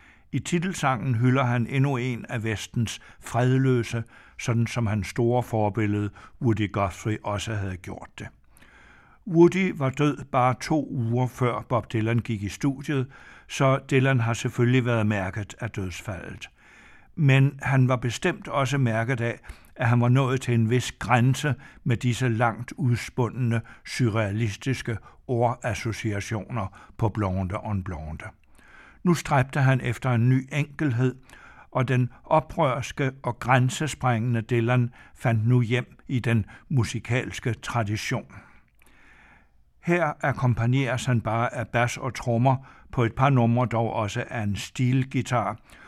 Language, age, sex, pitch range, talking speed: Danish, 60-79, male, 110-130 Hz, 135 wpm